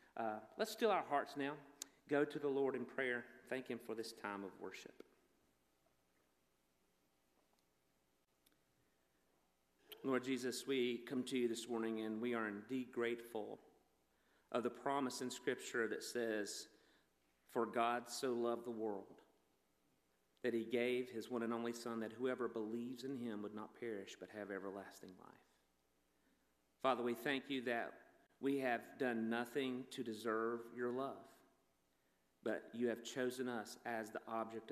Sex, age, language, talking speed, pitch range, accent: male, 40-59, English, 150 wpm, 100-125 Hz, American